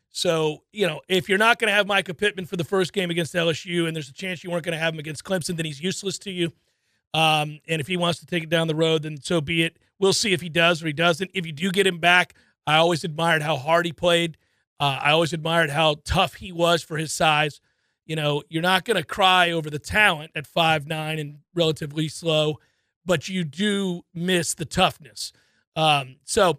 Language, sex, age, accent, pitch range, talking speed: English, male, 40-59, American, 160-200 Hz, 235 wpm